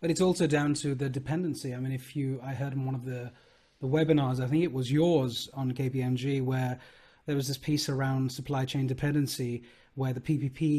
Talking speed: 210 wpm